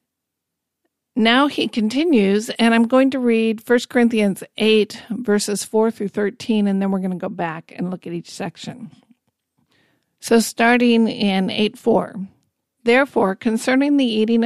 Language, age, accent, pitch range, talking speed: English, 50-69, American, 195-235 Hz, 145 wpm